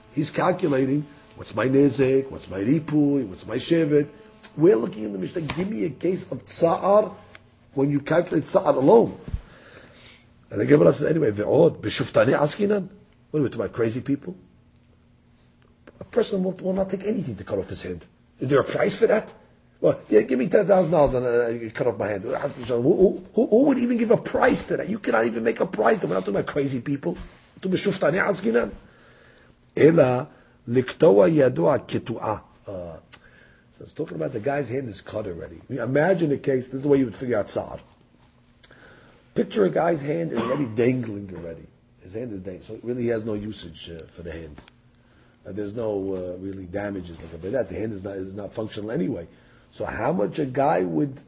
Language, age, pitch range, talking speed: English, 40-59, 110-170 Hz, 190 wpm